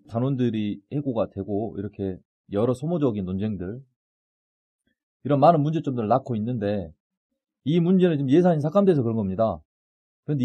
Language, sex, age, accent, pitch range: Korean, male, 30-49, native, 95-150 Hz